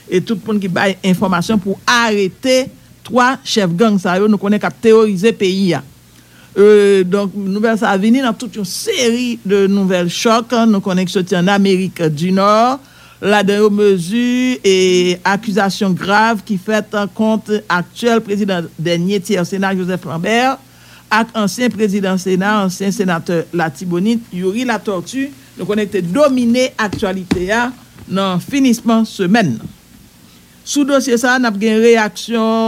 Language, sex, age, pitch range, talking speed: English, male, 60-79, 185-225 Hz, 150 wpm